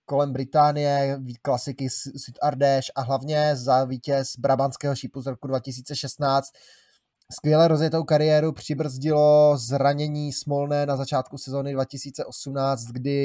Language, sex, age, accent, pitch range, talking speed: Czech, male, 20-39, native, 130-145 Hz, 115 wpm